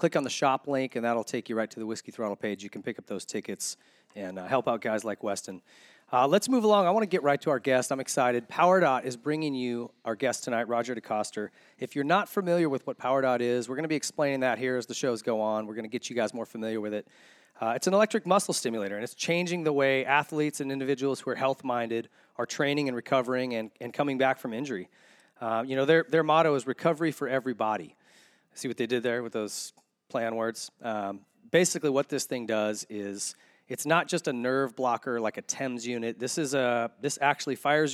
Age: 30-49